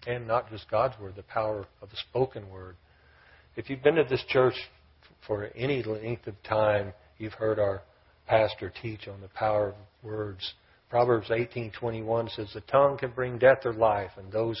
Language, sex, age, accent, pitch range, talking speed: English, male, 50-69, American, 95-110 Hz, 180 wpm